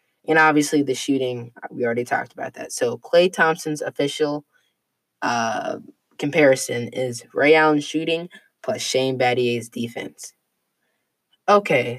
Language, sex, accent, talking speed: English, female, American, 120 wpm